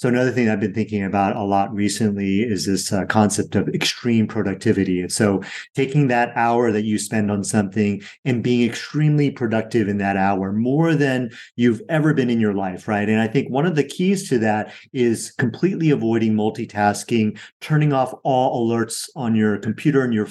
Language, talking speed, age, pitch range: English, 190 wpm, 30-49, 105-130 Hz